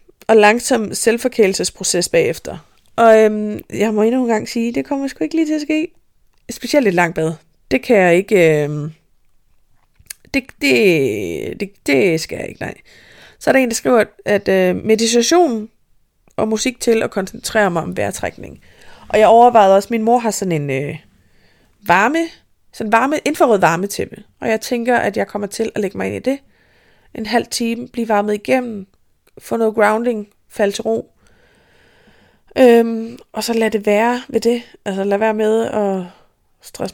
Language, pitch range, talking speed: Danish, 185-235 Hz, 180 wpm